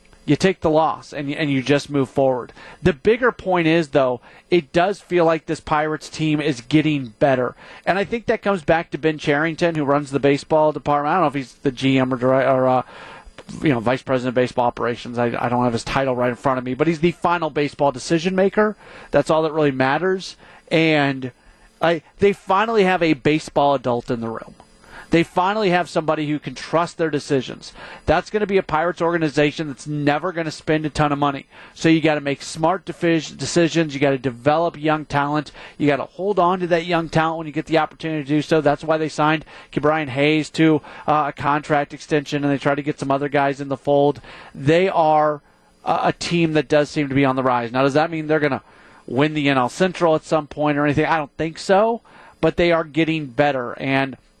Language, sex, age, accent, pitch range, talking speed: English, male, 40-59, American, 140-165 Hz, 225 wpm